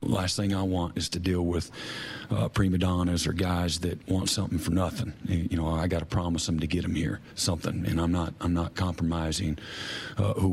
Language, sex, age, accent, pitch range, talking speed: English, male, 40-59, American, 90-105 Hz, 210 wpm